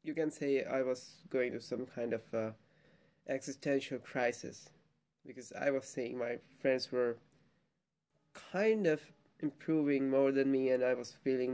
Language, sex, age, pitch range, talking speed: English, male, 20-39, 130-155 Hz, 155 wpm